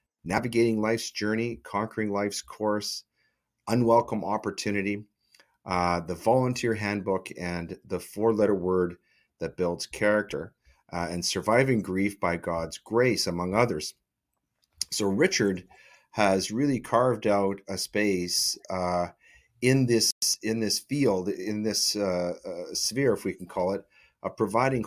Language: English